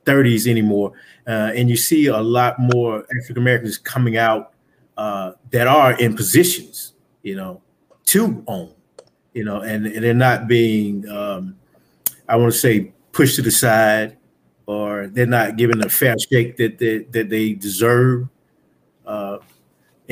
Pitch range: 110-125 Hz